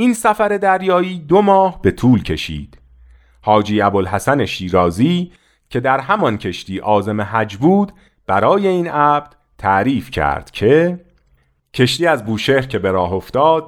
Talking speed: 135 wpm